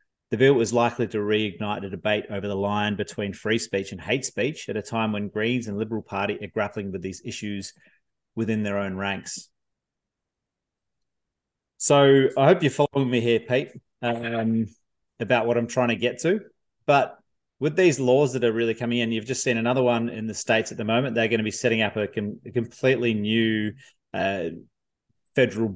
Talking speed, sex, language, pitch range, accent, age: 190 wpm, male, English, 105-125 Hz, Australian, 30-49